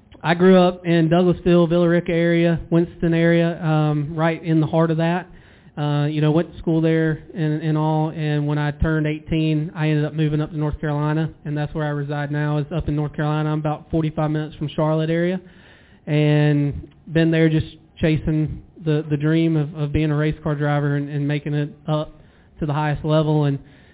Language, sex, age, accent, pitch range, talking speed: English, male, 20-39, American, 150-160 Hz, 205 wpm